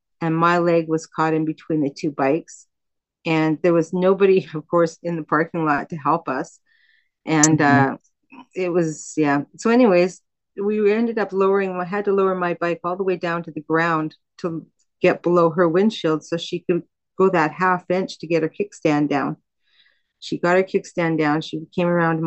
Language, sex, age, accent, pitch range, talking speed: English, female, 40-59, American, 155-180 Hz, 195 wpm